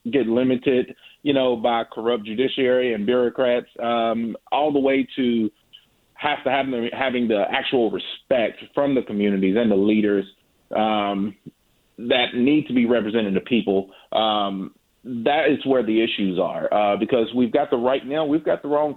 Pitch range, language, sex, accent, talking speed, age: 105-130 Hz, English, male, American, 170 wpm, 30-49